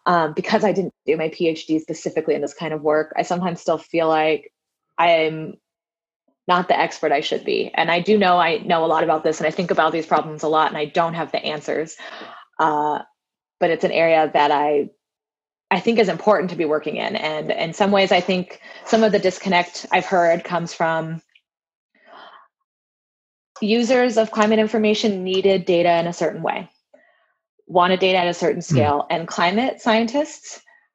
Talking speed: 190 wpm